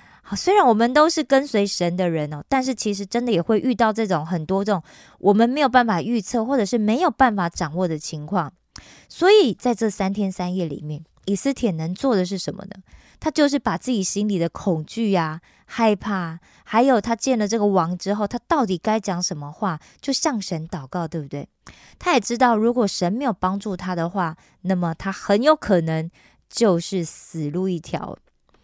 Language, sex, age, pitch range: Korean, female, 20-39, 180-250 Hz